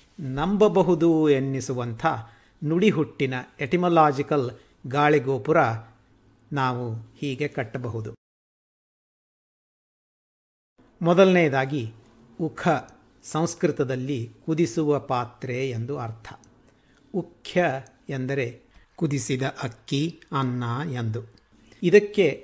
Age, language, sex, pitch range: 60-79, Kannada, male, 125-155 Hz